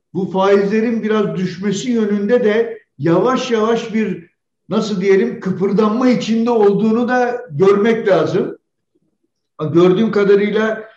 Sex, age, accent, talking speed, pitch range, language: male, 60-79, native, 105 wpm, 175-220 Hz, Turkish